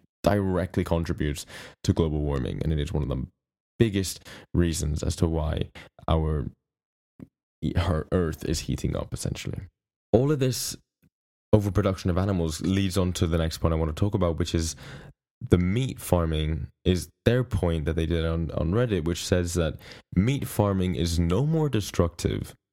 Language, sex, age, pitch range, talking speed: English, male, 10-29, 80-100 Hz, 165 wpm